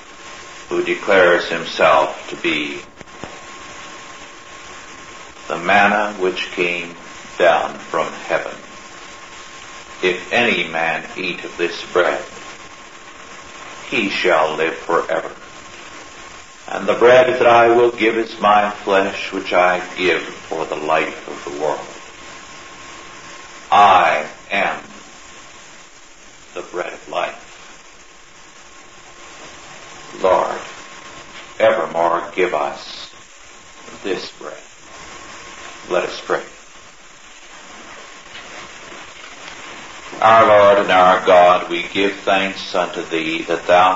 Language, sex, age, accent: English, male, 60-79, American